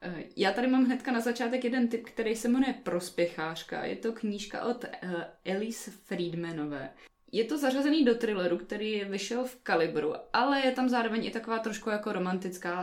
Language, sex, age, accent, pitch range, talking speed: Czech, female, 20-39, native, 180-245 Hz, 175 wpm